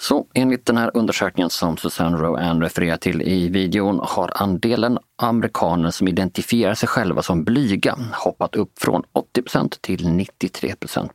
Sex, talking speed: male, 145 wpm